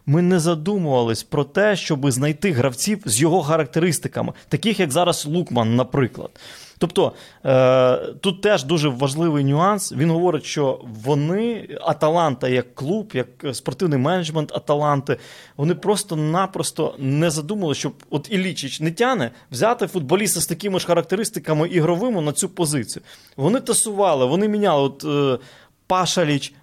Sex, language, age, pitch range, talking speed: male, Ukrainian, 20-39, 140-190 Hz, 130 wpm